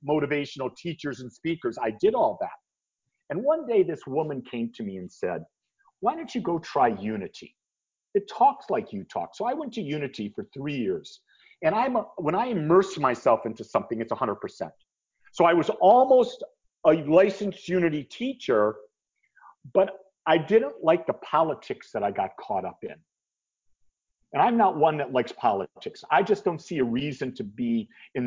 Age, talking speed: 50-69, 180 wpm